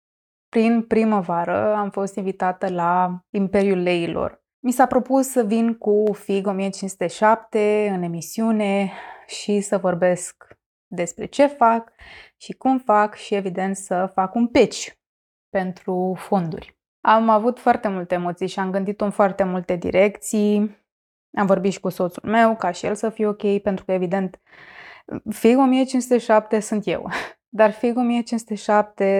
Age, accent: 20-39, native